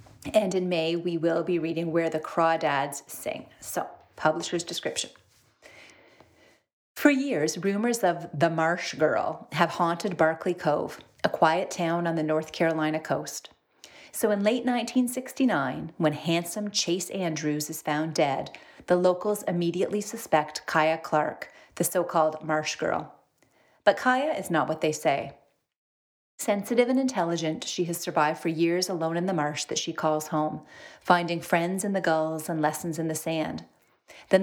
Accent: American